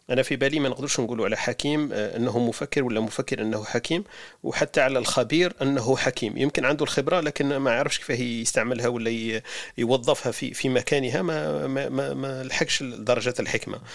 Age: 40-59